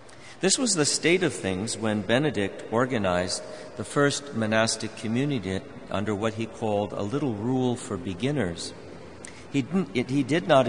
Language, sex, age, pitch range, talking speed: English, male, 50-69, 105-130 Hz, 145 wpm